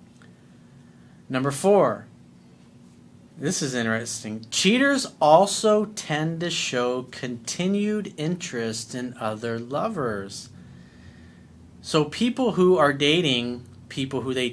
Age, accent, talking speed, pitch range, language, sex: 40-59, American, 95 wpm, 120-160 Hz, English, male